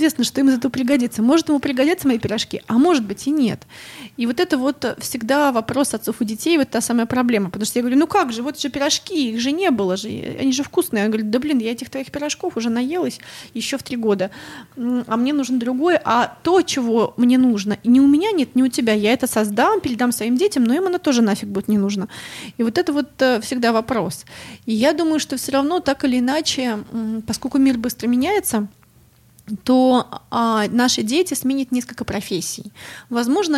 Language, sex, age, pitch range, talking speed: Russian, female, 20-39, 220-285 Hz, 210 wpm